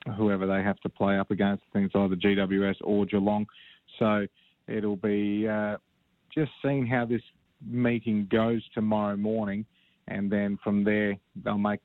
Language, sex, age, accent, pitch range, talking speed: English, male, 30-49, Australian, 100-110 Hz, 150 wpm